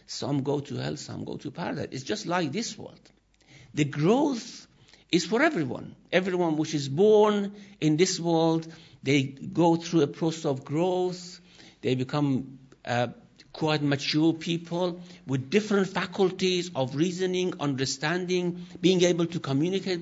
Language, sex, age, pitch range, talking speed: English, male, 60-79, 140-210 Hz, 145 wpm